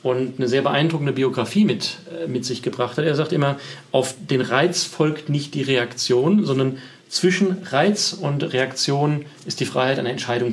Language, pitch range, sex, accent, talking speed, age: German, 130-170 Hz, male, German, 170 wpm, 40-59